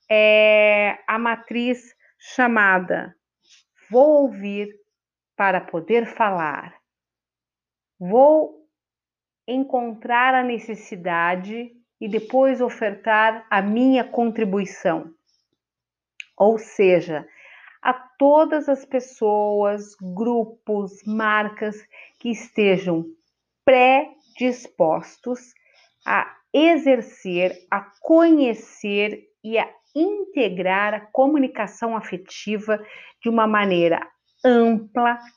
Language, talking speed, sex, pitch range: Portuguese, 75 wpm, female, 200-260 Hz